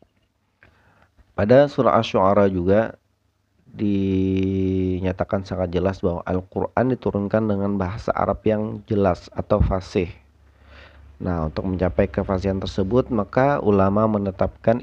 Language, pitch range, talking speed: Indonesian, 95-105 Hz, 100 wpm